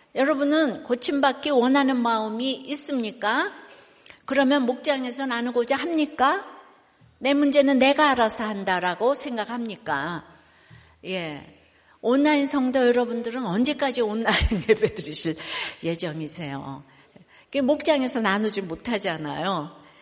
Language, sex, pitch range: Korean, female, 190-275 Hz